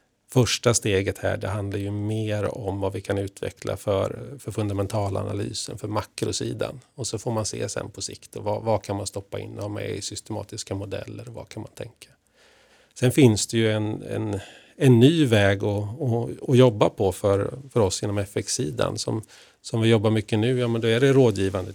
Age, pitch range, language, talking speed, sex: 30-49, 100-115 Hz, Swedish, 190 wpm, male